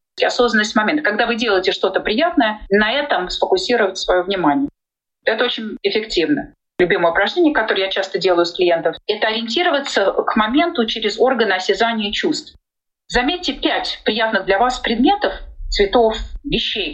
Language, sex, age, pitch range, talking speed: Russian, female, 30-49, 180-260 Hz, 140 wpm